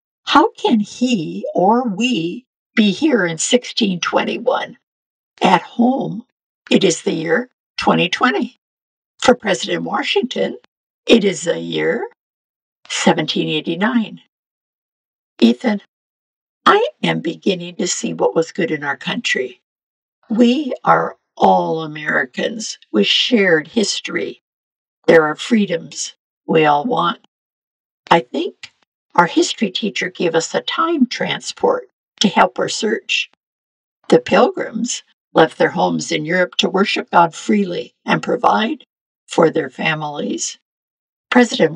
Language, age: English, 60-79